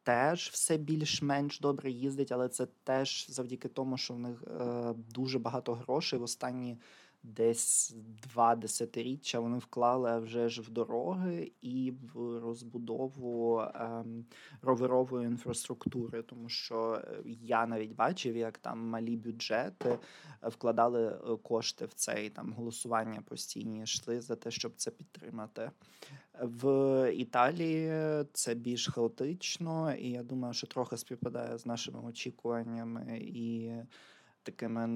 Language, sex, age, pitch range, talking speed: Ukrainian, male, 20-39, 115-130 Hz, 125 wpm